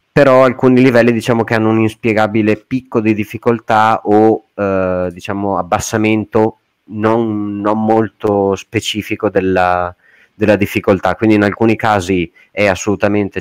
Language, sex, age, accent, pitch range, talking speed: Italian, male, 30-49, native, 95-110 Hz, 125 wpm